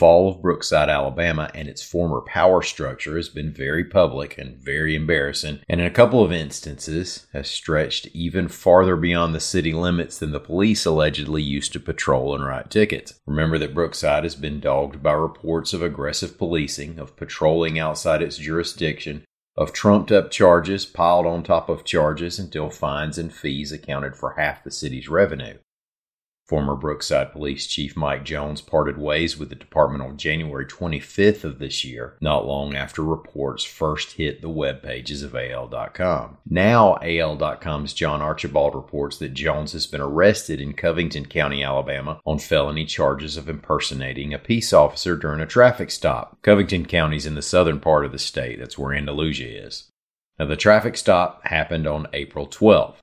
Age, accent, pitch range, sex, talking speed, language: 40-59, American, 70-85 Hz, male, 165 wpm, English